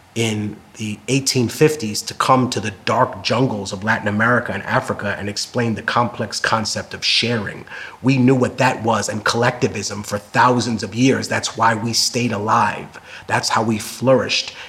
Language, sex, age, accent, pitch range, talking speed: English, male, 30-49, American, 110-135 Hz, 170 wpm